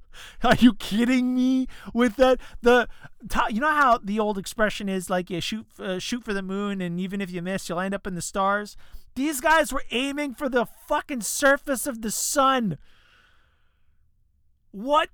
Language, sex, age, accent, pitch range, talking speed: English, male, 30-49, American, 180-265 Hz, 180 wpm